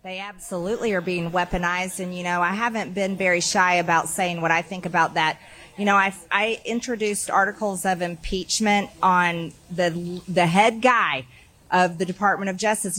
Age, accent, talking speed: 30-49, American, 175 wpm